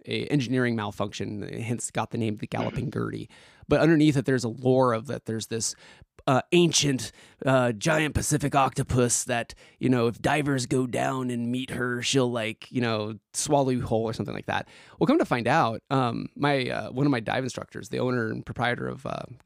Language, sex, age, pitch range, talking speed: English, male, 20-39, 120-145 Hz, 205 wpm